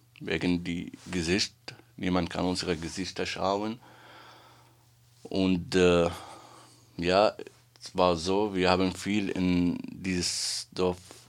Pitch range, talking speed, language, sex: 85-120 Hz, 105 wpm, German, male